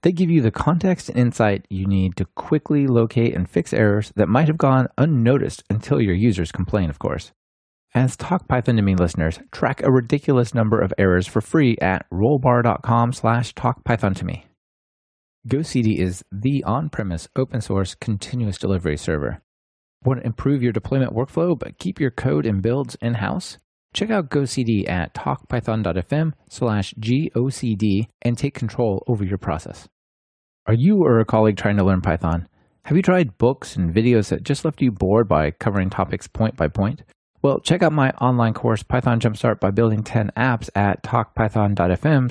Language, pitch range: English, 100-130 Hz